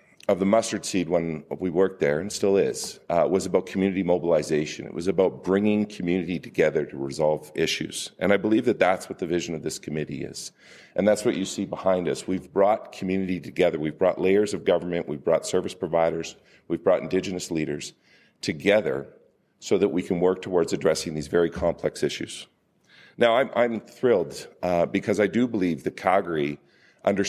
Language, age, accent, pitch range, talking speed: English, 50-69, American, 80-100 Hz, 185 wpm